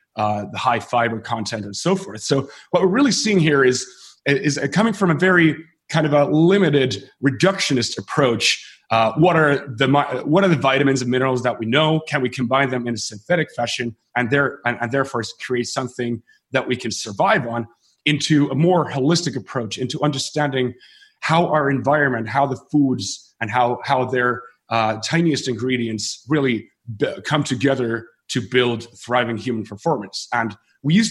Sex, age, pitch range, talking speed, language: male, 30-49, 120-145 Hz, 175 wpm, English